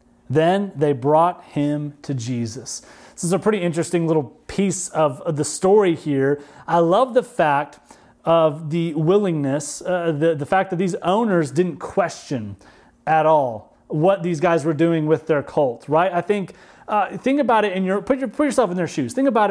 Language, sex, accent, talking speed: English, male, American, 190 wpm